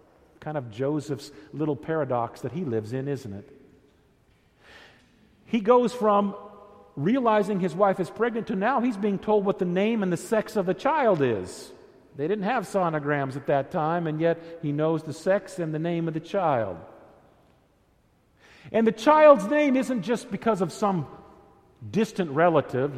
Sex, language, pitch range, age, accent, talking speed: male, English, 130-195 Hz, 50-69, American, 165 wpm